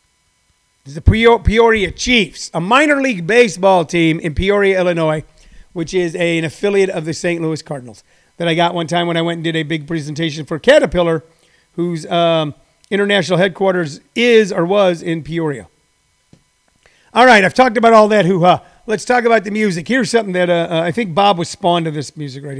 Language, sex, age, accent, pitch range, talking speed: English, male, 40-59, American, 165-220 Hz, 190 wpm